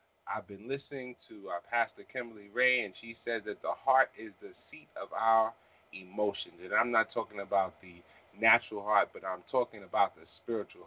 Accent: American